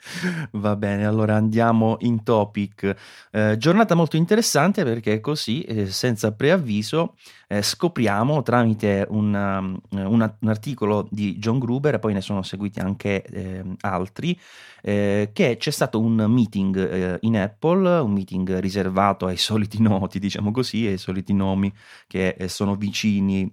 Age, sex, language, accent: 30-49, male, Italian, native